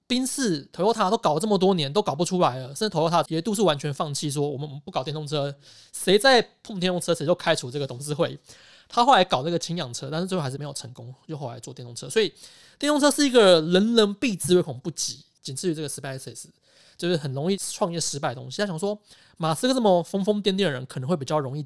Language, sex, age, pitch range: Chinese, male, 20-39, 140-195 Hz